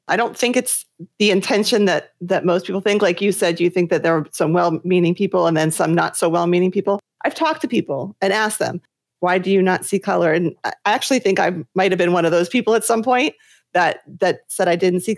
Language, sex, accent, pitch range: English, female, American, 175-215 Hz